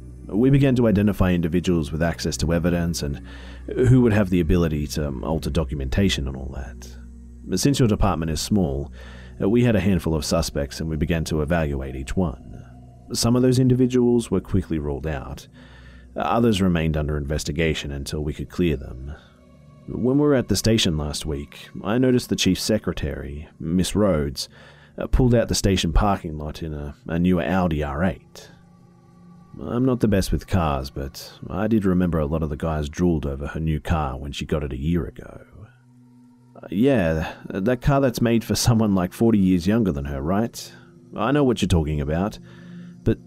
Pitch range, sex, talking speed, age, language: 70-105 Hz, male, 180 wpm, 40-59, English